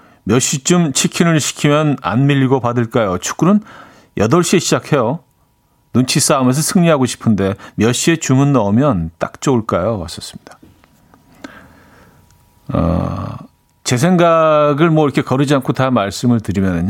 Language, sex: Korean, male